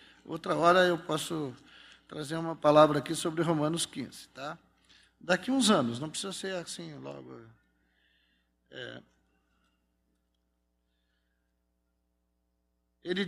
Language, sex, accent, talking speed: Portuguese, male, Brazilian, 100 wpm